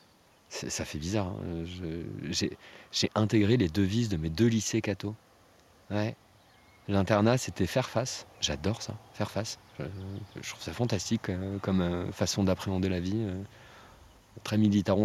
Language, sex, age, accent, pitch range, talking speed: French, male, 30-49, French, 85-105 Hz, 155 wpm